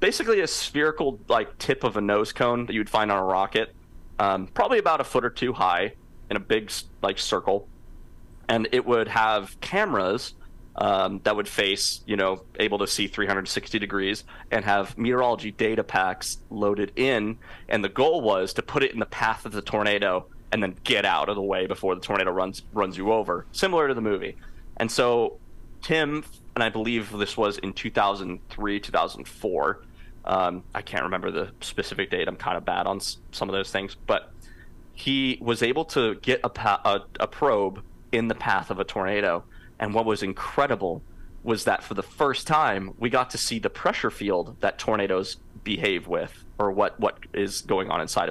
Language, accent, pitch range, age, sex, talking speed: English, American, 95-115 Hz, 30-49, male, 190 wpm